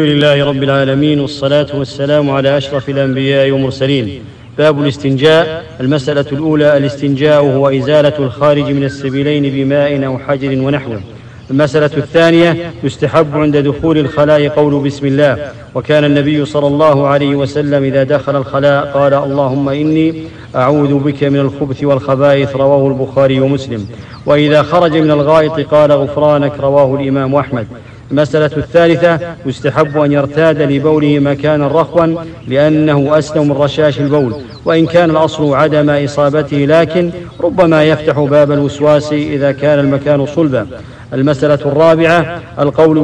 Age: 40-59